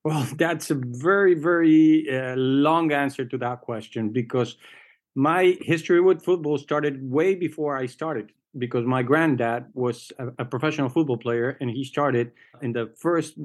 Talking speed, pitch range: 160 wpm, 120-140 Hz